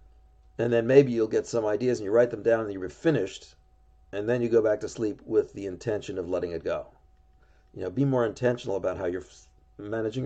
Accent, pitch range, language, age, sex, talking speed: American, 85-140 Hz, English, 40-59, male, 230 wpm